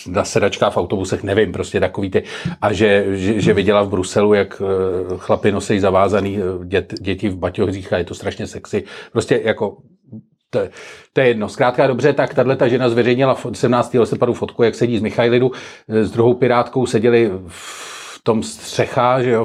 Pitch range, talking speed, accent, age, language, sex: 100-120 Hz, 170 wpm, native, 40-59, Czech, male